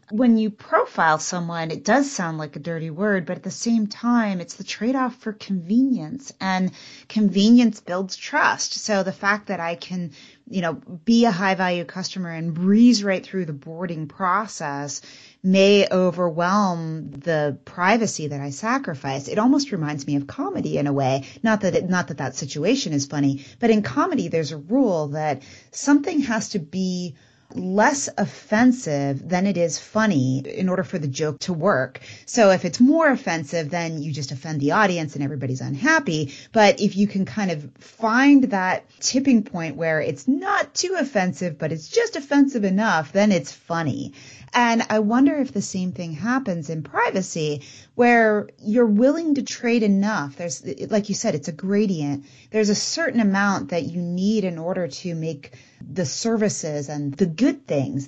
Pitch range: 150-220 Hz